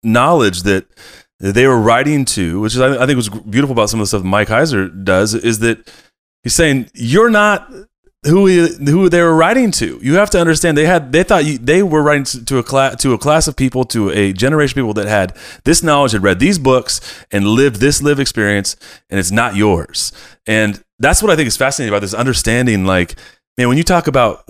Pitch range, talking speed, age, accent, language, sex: 100-135 Hz, 230 wpm, 30-49, American, English, male